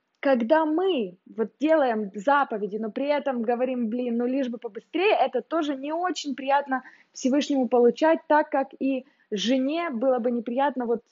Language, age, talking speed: Russian, 20-39, 155 wpm